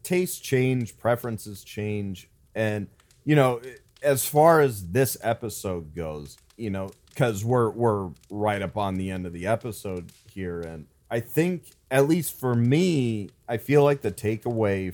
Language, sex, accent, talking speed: English, male, American, 155 wpm